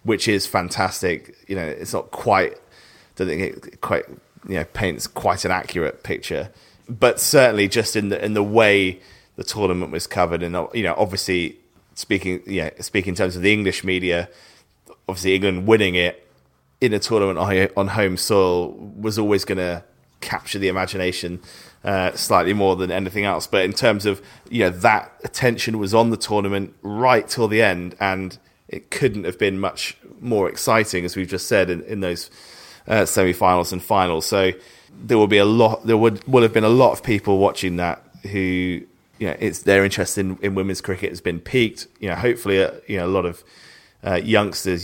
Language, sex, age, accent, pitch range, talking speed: English, male, 20-39, British, 90-105 Hz, 195 wpm